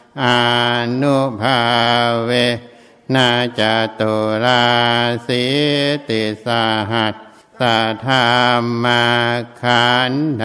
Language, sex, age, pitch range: Thai, male, 60-79, 120-125 Hz